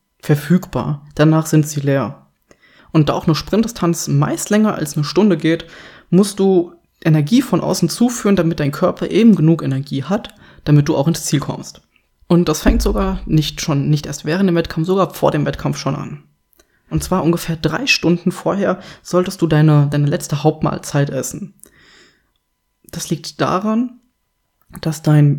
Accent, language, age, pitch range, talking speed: German, German, 20-39, 150-180 Hz, 165 wpm